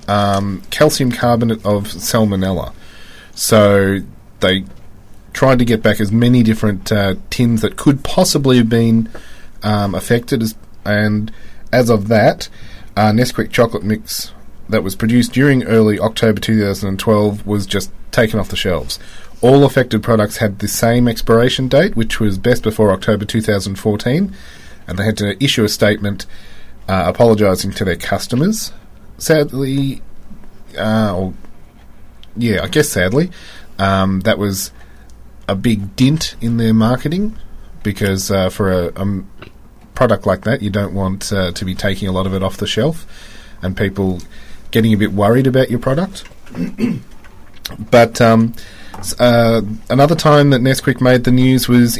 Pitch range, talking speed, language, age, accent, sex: 100-120 Hz, 150 wpm, English, 30-49, Australian, male